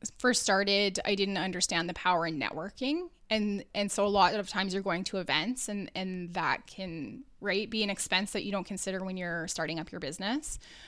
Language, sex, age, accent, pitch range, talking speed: English, female, 20-39, American, 175-210 Hz, 210 wpm